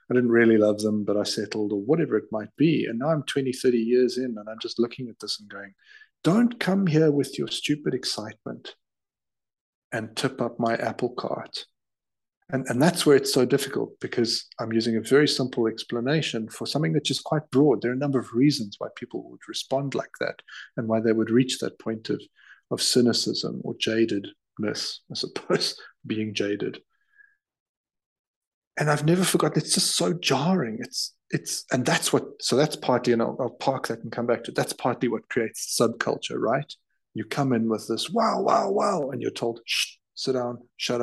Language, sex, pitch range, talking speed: English, male, 115-155 Hz, 200 wpm